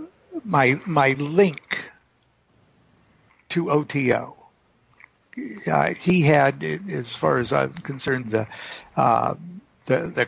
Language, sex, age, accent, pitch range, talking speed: English, male, 60-79, American, 125-170 Hz, 100 wpm